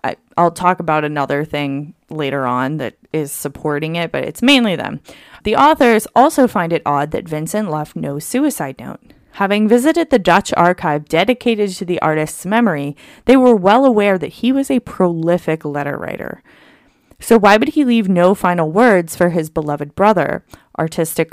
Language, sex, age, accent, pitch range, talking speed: English, female, 20-39, American, 155-225 Hz, 170 wpm